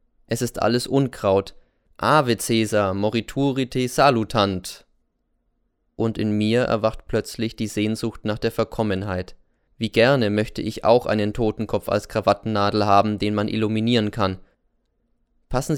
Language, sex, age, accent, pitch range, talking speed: German, male, 20-39, German, 100-115 Hz, 125 wpm